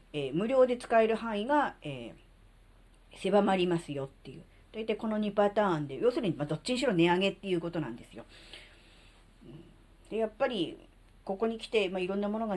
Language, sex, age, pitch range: Japanese, female, 40-59, 140-200 Hz